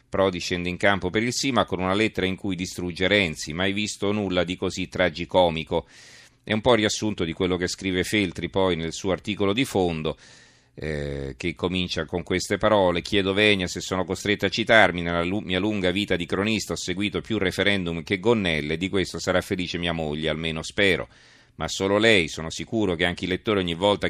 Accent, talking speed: native, 200 wpm